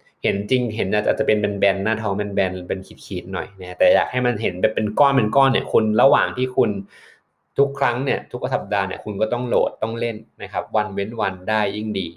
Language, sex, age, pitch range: Thai, male, 20-39, 100-130 Hz